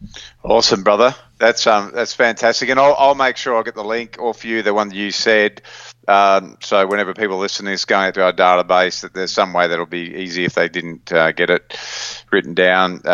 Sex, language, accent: male, English, Australian